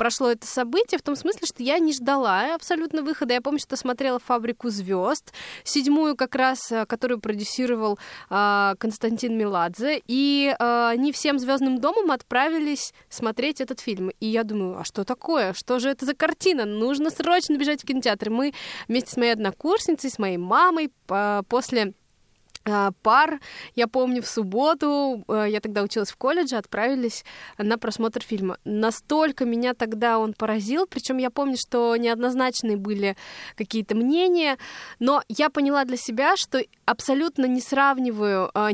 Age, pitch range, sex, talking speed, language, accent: 20-39, 225-285 Hz, female, 150 wpm, Russian, native